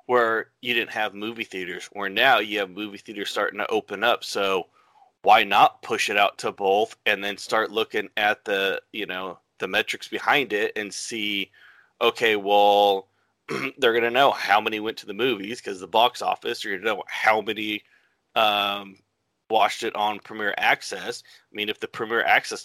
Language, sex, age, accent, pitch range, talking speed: English, male, 30-49, American, 100-130 Hz, 185 wpm